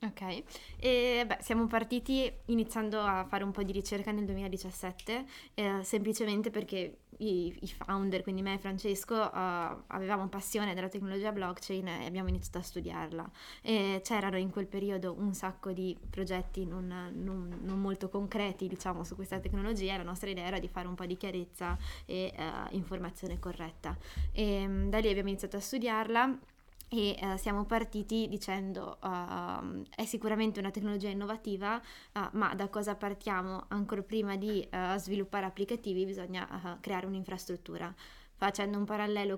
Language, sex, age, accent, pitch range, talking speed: Italian, female, 20-39, native, 185-205 Hz, 155 wpm